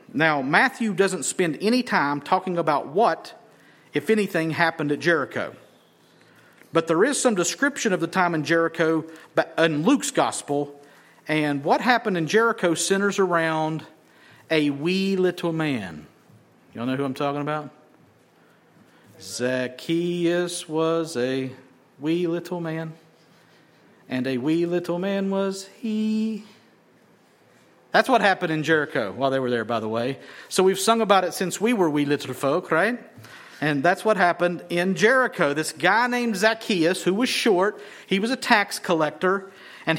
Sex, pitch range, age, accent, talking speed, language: male, 155-210 Hz, 50-69, American, 150 wpm, English